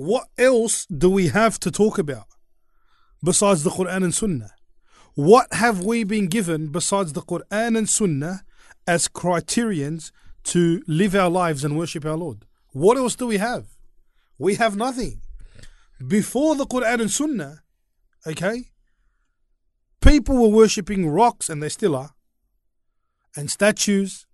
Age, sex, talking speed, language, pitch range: 30-49, male, 140 wpm, English, 160-220 Hz